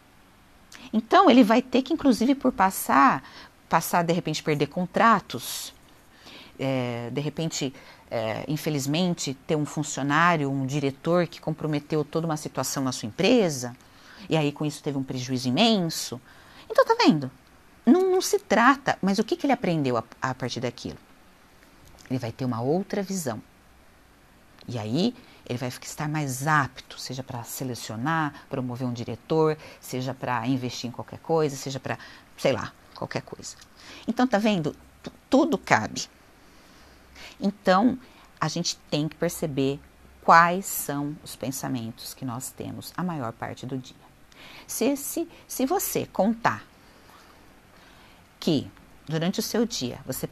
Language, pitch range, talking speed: Portuguese, 125-175 Hz, 140 wpm